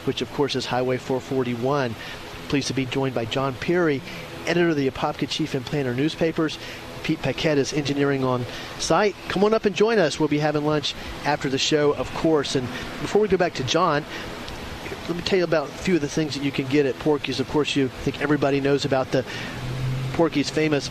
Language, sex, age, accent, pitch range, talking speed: English, male, 40-59, American, 130-160 Hz, 215 wpm